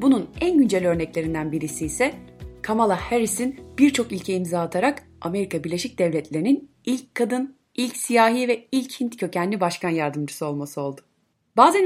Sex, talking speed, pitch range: female, 140 wpm, 165-255 Hz